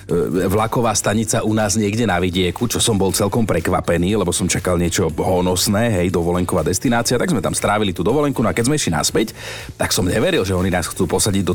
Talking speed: 215 wpm